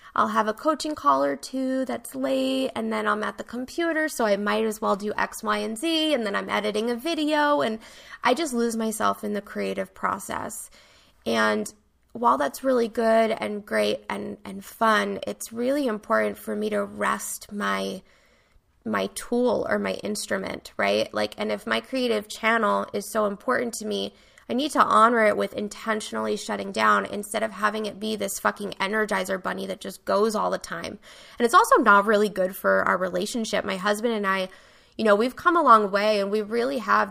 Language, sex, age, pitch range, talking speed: English, female, 20-39, 195-245 Hz, 200 wpm